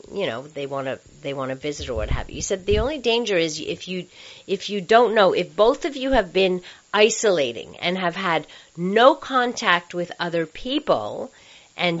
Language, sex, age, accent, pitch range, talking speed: English, female, 40-59, American, 155-220 Hz, 205 wpm